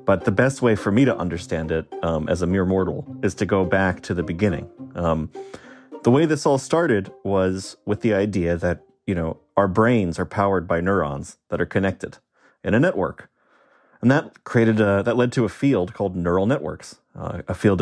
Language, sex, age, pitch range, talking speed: English, male, 30-49, 95-115 Hz, 205 wpm